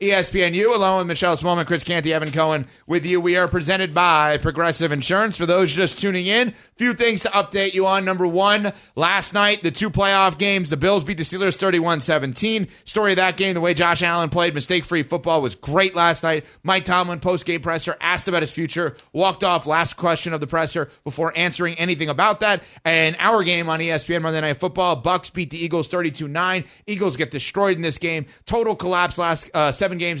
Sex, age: male, 30-49